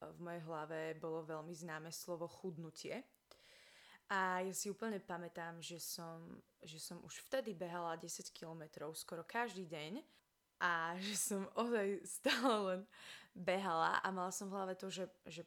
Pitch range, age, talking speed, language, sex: 165-190 Hz, 20-39, 155 wpm, Slovak, female